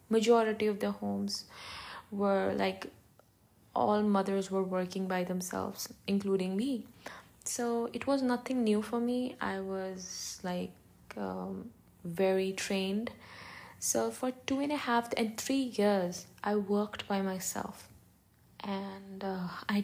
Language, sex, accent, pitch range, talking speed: English, female, Indian, 190-230 Hz, 130 wpm